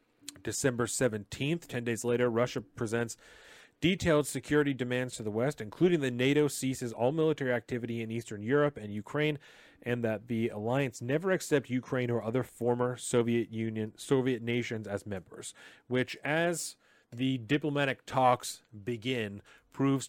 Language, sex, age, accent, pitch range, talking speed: English, male, 30-49, American, 110-135 Hz, 145 wpm